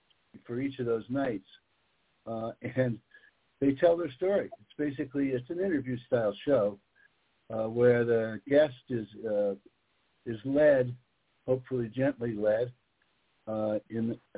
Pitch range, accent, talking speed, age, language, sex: 105-130 Hz, American, 125 wpm, 60-79, English, male